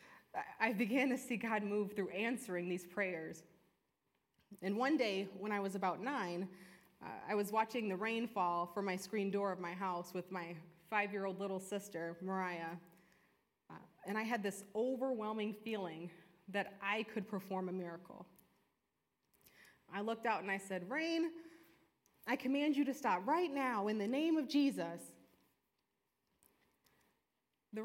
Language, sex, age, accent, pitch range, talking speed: English, female, 20-39, American, 185-230 Hz, 155 wpm